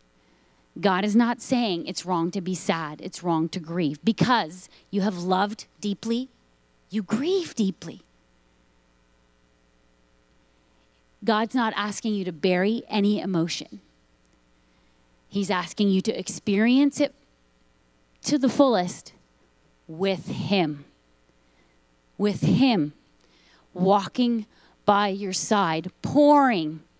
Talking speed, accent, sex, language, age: 105 wpm, American, female, English, 30-49